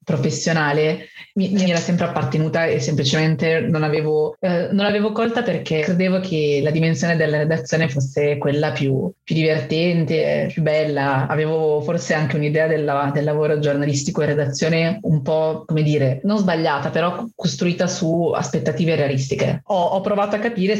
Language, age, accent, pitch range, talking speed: Italian, 30-49, native, 150-175 Hz, 150 wpm